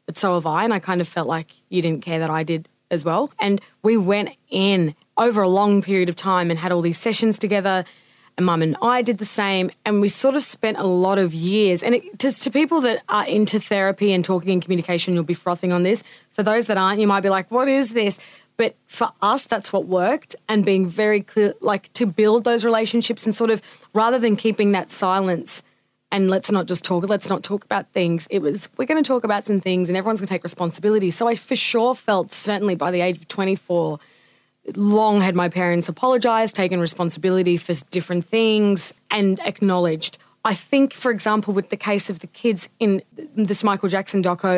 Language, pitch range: English, 175-215 Hz